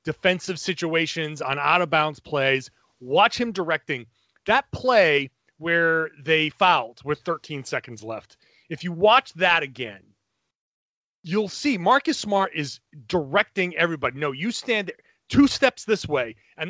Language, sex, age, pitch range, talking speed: English, male, 30-49, 150-205 Hz, 135 wpm